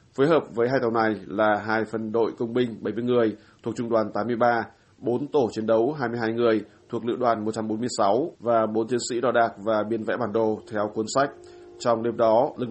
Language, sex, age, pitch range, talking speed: Vietnamese, male, 20-39, 110-120 Hz, 215 wpm